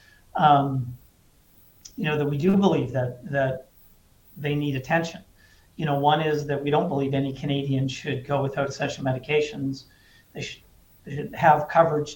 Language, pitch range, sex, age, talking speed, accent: English, 135-150 Hz, male, 50-69, 165 wpm, American